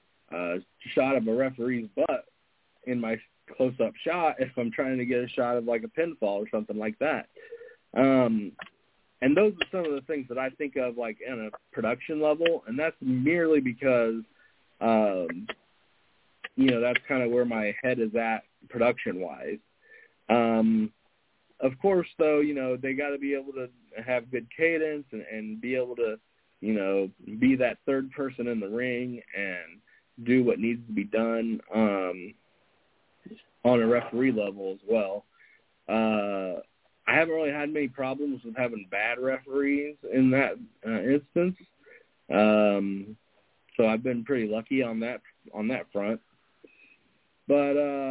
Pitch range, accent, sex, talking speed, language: 115-140 Hz, American, male, 160 wpm, English